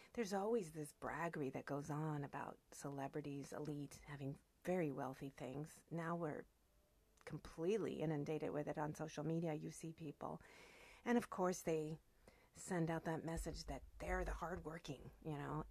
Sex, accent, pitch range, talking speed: female, American, 145-175 Hz, 155 wpm